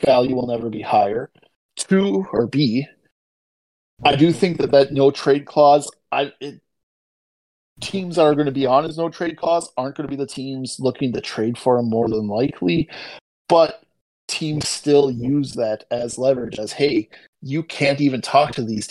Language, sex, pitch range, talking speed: English, male, 115-150 Hz, 180 wpm